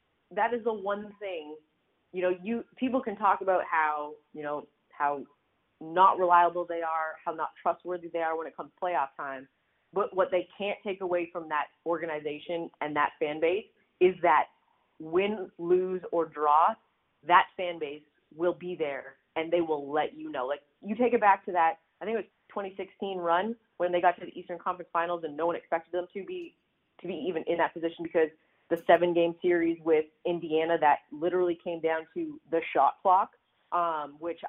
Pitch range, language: 160-195 Hz, English